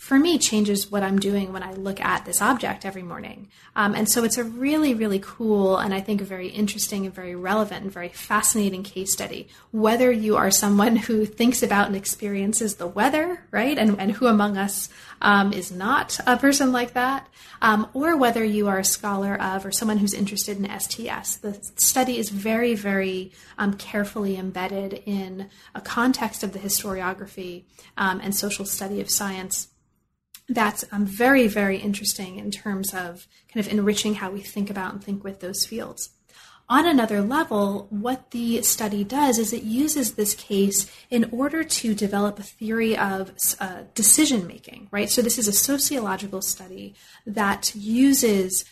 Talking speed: 175 wpm